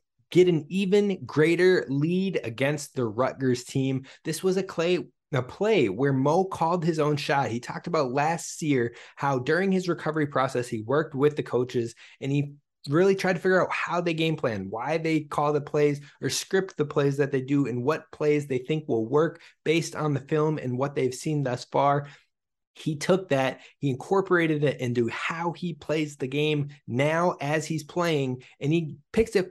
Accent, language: American, English